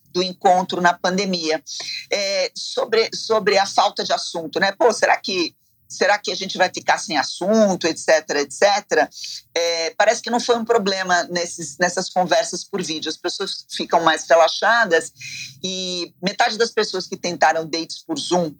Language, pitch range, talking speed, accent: Portuguese, 160-195 Hz, 165 wpm, Brazilian